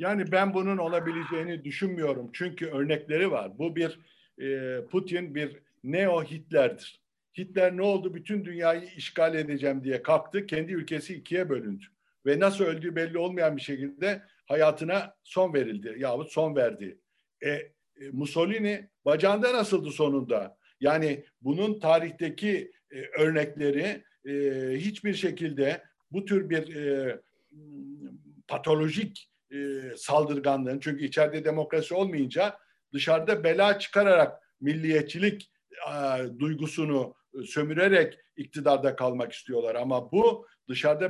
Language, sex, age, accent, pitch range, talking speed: Turkish, male, 60-79, native, 140-185 Hz, 110 wpm